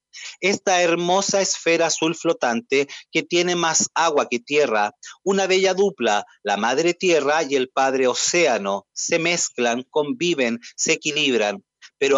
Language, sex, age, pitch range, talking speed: Spanish, male, 40-59, 140-180 Hz, 135 wpm